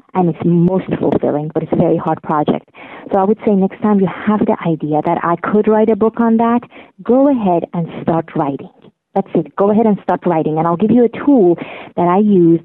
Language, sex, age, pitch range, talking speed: English, female, 30-49, 165-200 Hz, 235 wpm